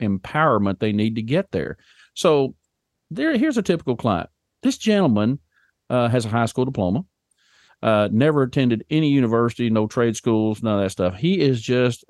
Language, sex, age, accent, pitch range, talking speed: English, male, 50-69, American, 105-130 Hz, 175 wpm